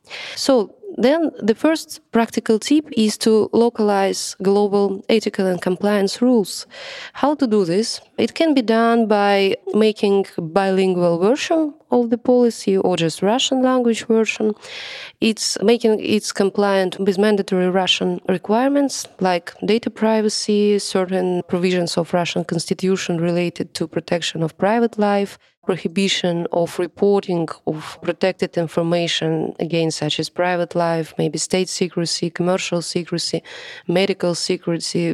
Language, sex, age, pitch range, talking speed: English, female, 20-39, 175-225 Hz, 125 wpm